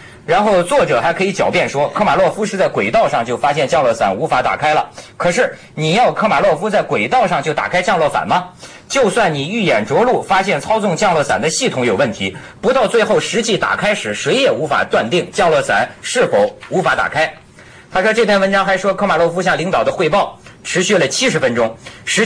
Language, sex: Chinese, male